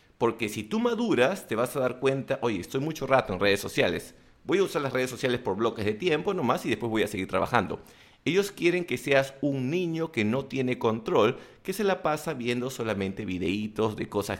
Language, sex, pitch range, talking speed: English, male, 110-145 Hz, 215 wpm